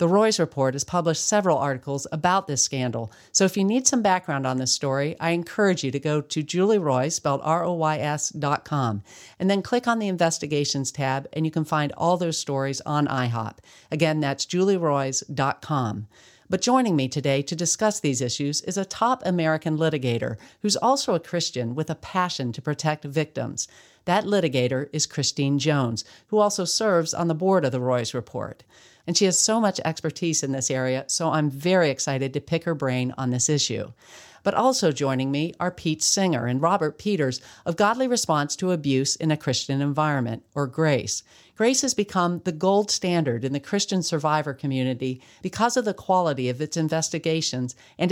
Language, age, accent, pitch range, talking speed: English, 50-69, American, 135-180 Hz, 185 wpm